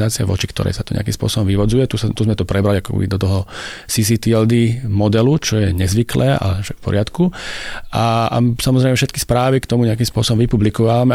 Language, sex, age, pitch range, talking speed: Slovak, male, 40-59, 105-125 Hz, 185 wpm